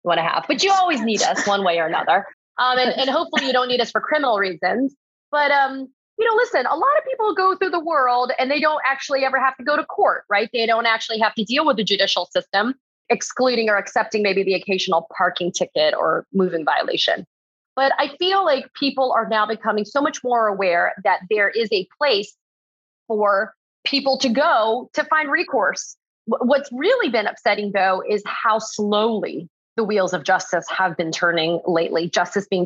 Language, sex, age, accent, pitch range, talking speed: English, female, 30-49, American, 205-280 Hz, 200 wpm